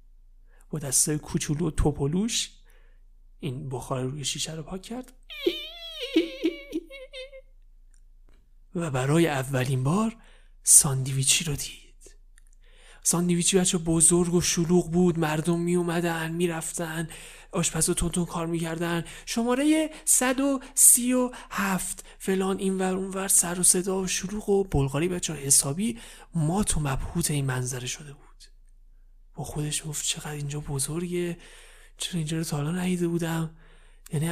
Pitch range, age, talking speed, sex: 155-245 Hz, 30-49, 120 wpm, male